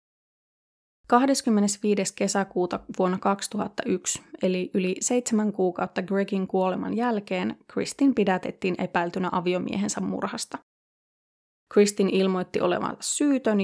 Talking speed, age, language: 90 wpm, 20-39, Finnish